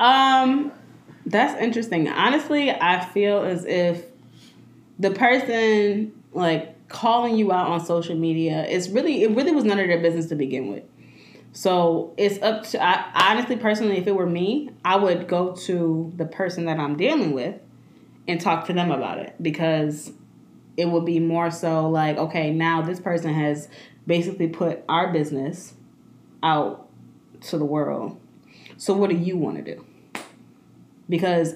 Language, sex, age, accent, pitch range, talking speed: English, female, 20-39, American, 165-215 Hz, 160 wpm